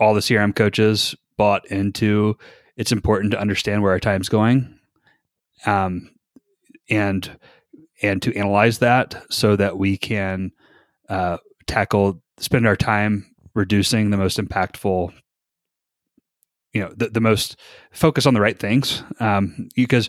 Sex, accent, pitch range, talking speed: male, American, 95-115 Hz, 130 wpm